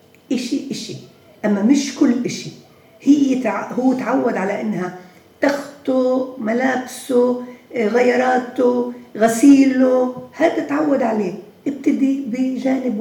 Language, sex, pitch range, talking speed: Arabic, female, 160-255 Hz, 95 wpm